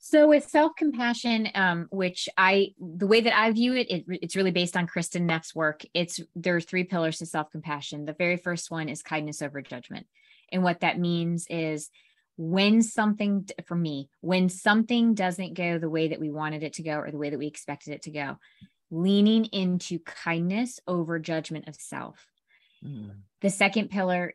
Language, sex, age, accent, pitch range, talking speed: English, female, 20-39, American, 155-185 Hz, 180 wpm